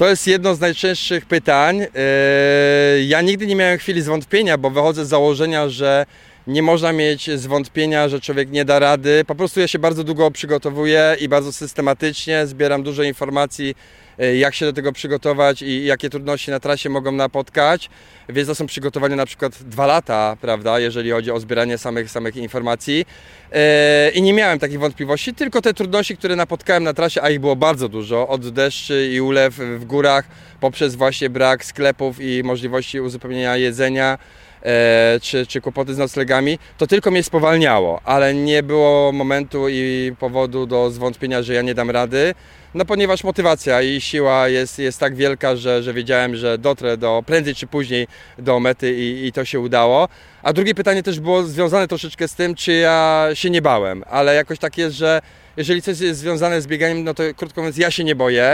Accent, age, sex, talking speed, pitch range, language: native, 20-39, male, 180 wpm, 130-165 Hz, Polish